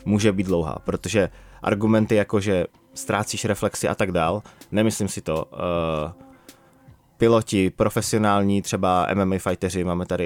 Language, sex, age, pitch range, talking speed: Czech, male, 20-39, 95-115 Hz, 135 wpm